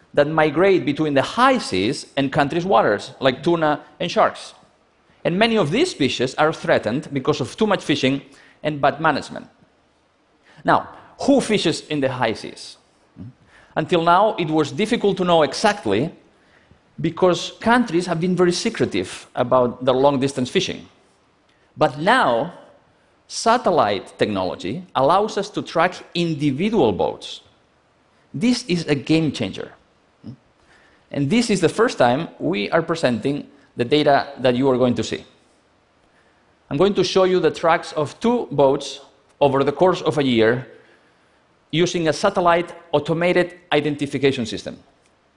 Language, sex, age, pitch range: Chinese, male, 40-59, 140-180 Hz